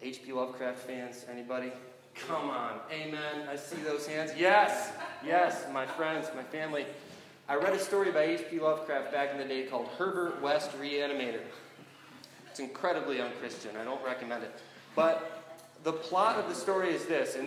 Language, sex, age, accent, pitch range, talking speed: English, male, 30-49, American, 140-195 Hz, 165 wpm